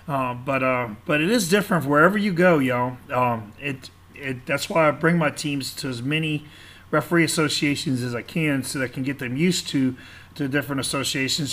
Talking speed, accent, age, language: 205 wpm, American, 40-59, English